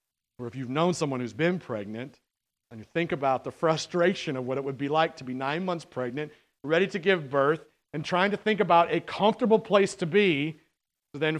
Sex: male